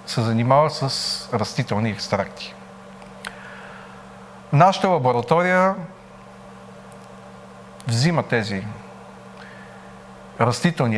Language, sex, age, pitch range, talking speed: Bulgarian, male, 40-59, 115-170 Hz, 55 wpm